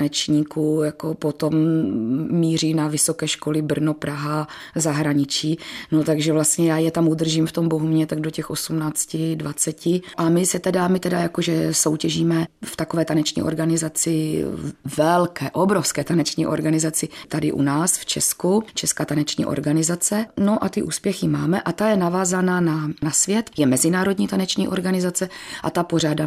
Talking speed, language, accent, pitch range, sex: 155 wpm, Czech, native, 155-170 Hz, female